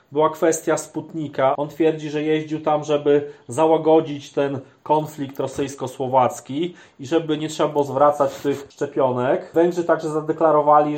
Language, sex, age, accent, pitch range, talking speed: Polish, male, 30-49, native, 140-165 Hz, 130 wpm